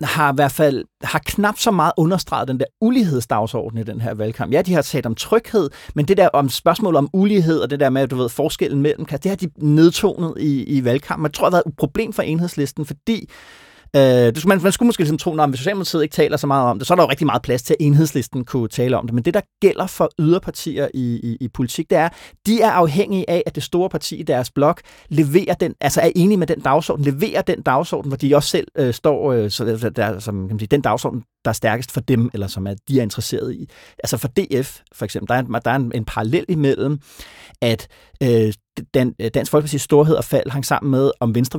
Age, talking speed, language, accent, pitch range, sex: 30-49, 250 wpm, Danish, native, 120-165 Hz, male